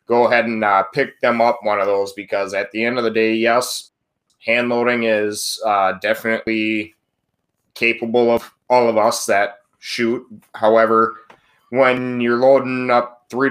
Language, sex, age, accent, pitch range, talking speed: English, male, 20-39, American, 110-120 Hz, 155 wpm